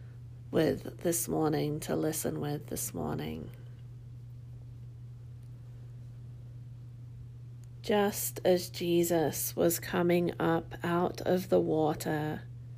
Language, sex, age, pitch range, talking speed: English, female, 40-59, 120-165 Hz, 85 wpm